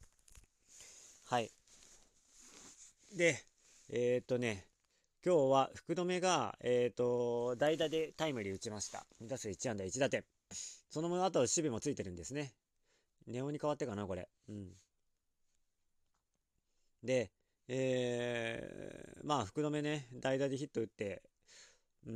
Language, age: Japanese, 40-59